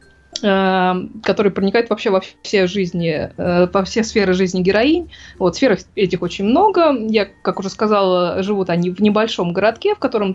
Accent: native